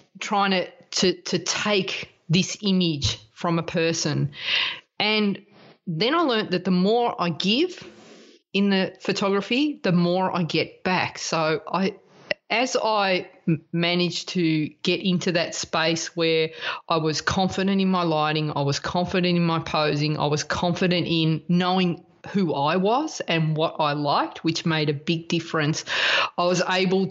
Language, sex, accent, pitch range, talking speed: English, female, Australian, 155-185 Hz, 155 wpm